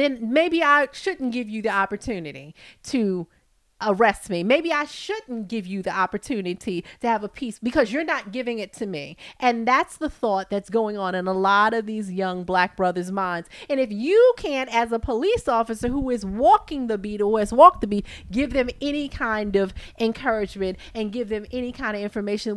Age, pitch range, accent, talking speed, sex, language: 30-49, 205-290 Hz, American, 200 wpm, female, English